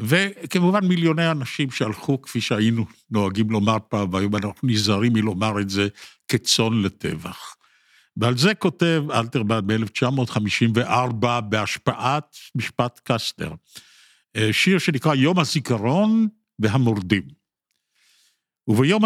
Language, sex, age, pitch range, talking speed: Hebrew, male, 50-69, 105-140 Hz, 100 wpm